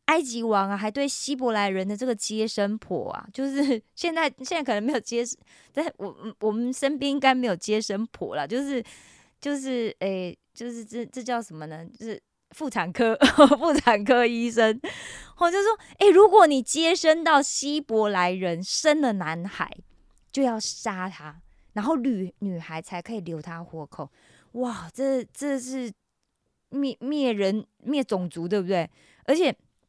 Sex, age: female, 20-39